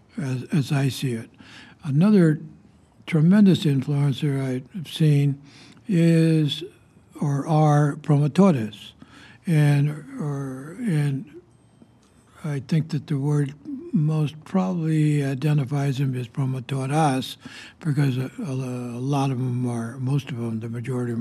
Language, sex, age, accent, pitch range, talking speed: English, male, 60-79, American, 130-165 Hz, 115 wpm